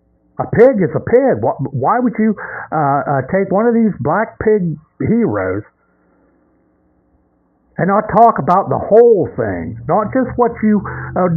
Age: 60-79